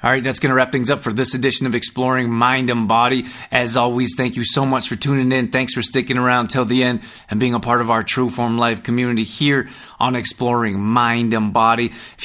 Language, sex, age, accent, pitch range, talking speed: English, male, 20-39, American, 105-125 Hz, 240 wpm